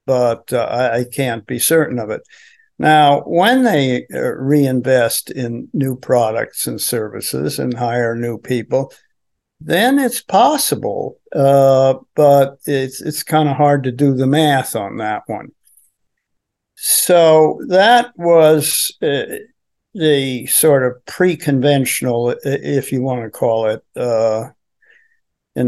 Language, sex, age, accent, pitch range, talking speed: English, male, 60-79, American, 125-155 Hz, 130 wpm